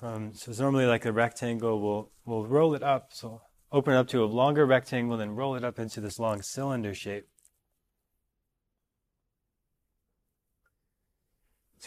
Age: 20-39